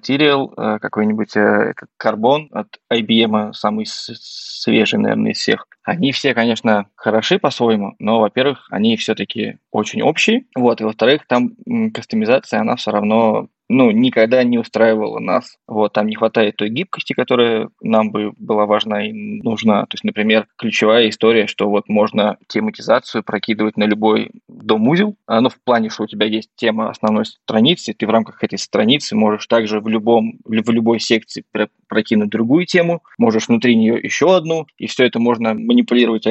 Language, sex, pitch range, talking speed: Russian, male, 110-130 Hz, 155 wpm